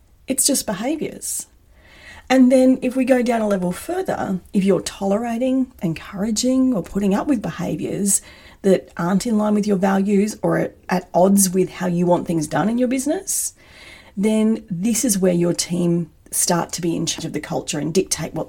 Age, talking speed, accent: 40-59, 185 wpm, Australian